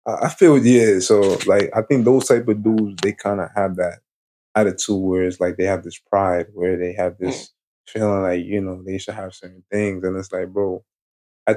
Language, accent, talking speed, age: English, American, 215 wpm, 20-39